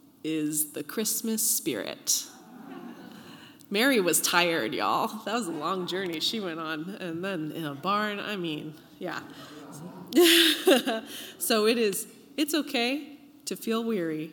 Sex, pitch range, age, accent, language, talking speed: female, 175-270 Hz, 20-39, American, English, 135 wpm